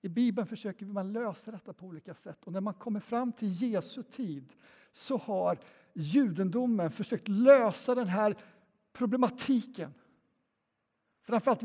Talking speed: 135 wpm